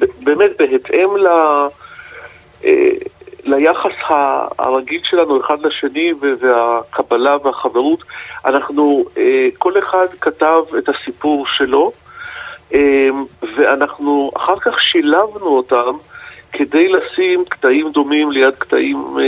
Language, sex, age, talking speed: Hebrew, male, 50-69, 85 wpm